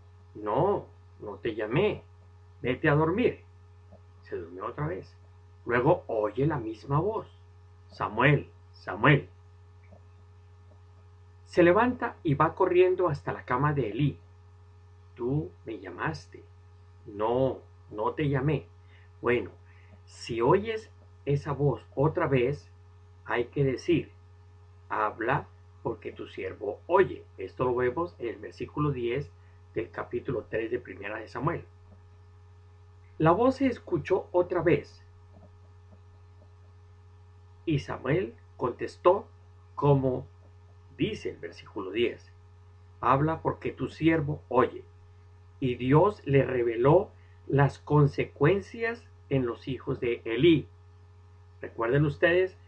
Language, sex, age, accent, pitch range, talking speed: Spanish, male, 50-69, Mexican, 90-135 Hz, 110 wpm